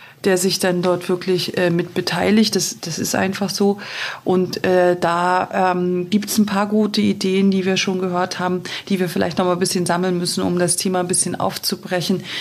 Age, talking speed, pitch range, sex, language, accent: 40-59, 210 wpm, 180-205 Hz, female, German, German